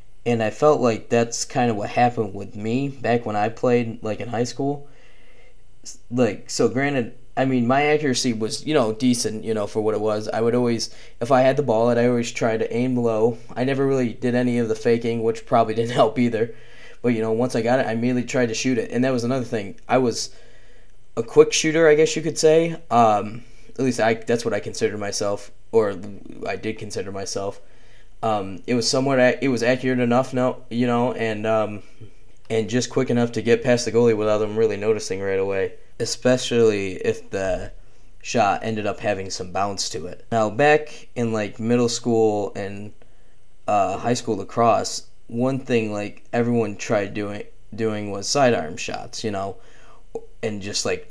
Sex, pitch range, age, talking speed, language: male, 110-125 Hz, 20-39, 200 wpm, English